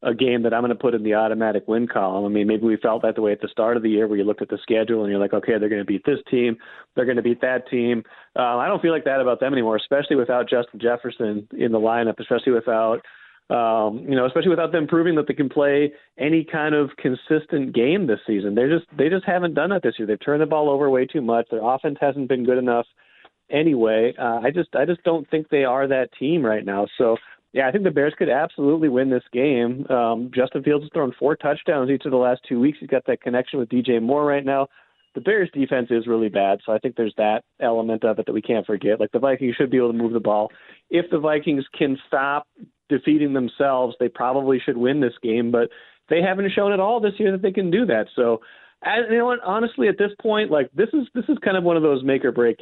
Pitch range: 115-155 Hz